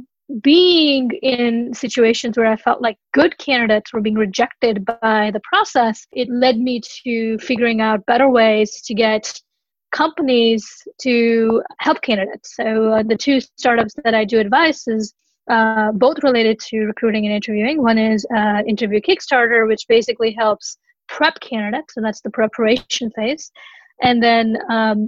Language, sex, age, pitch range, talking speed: English, female, 20-39, 220-265 Hz, 155 wpm